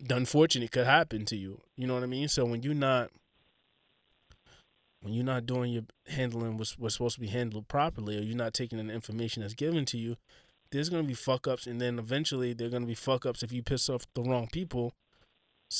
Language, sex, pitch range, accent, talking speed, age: English, male, 115-140 Hz, American, 225 wpm, 20-39